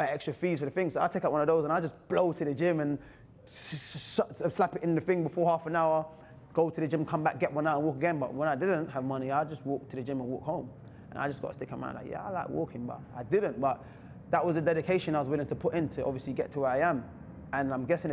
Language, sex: English, male